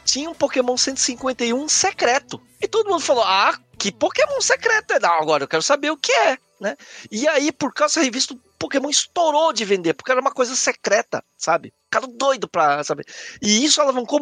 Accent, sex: Brazilian, male